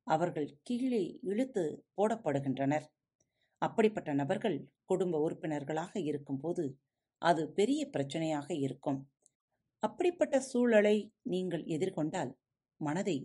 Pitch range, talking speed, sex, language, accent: 140-215 Hz, 85 wpm, female, Tamil, native